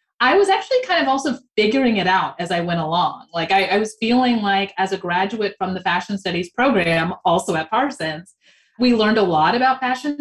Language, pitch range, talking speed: English, 185-255 Hz, 210 wpm